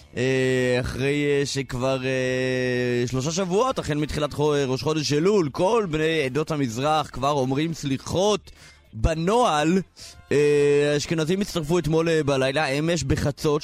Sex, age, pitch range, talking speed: male, 20-39, 135-170 Hz, 130 wpm